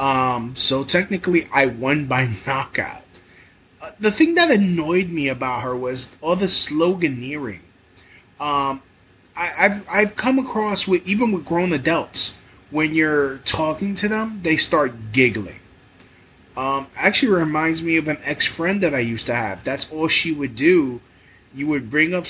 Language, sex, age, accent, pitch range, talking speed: English, male, 20-39, American, 135-200 Hz, 160 wpm